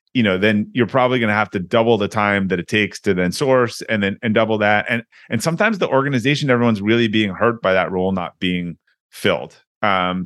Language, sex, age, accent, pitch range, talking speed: English, male, 30-49, American, 100-125 Hz, 230 wpm